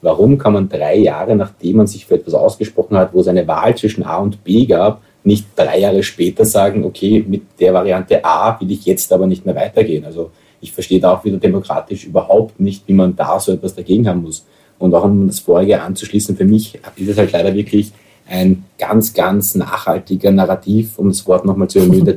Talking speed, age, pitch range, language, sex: 215 wpm, 30-49, 95-110 Hz, German, male